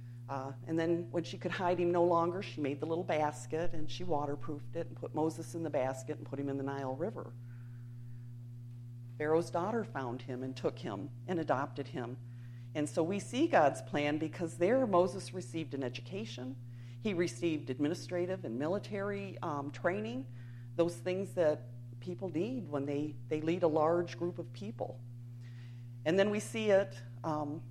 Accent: American